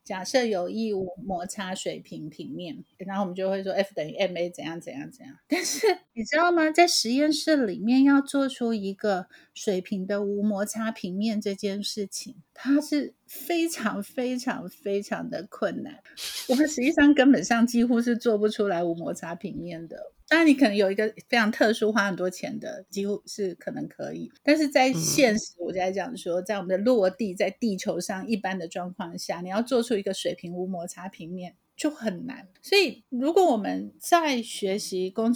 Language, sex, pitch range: Chinese, female, 190-255 Hz